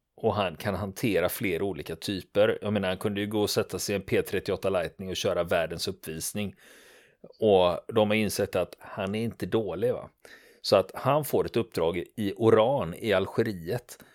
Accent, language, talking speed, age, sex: native, Swedish, 185 wpm, 40-59, male